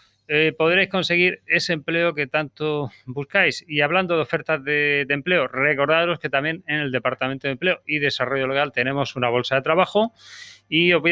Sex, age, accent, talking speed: male, 30-49, Spanish, 185 wpm